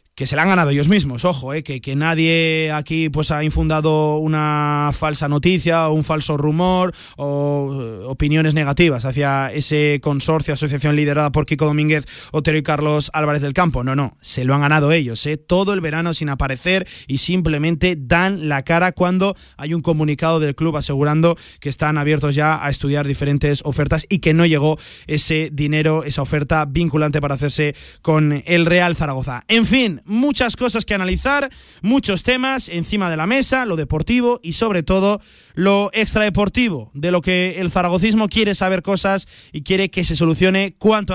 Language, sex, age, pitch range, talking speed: Spanish, male, 20-39, 150-200 Hz, 175 wpm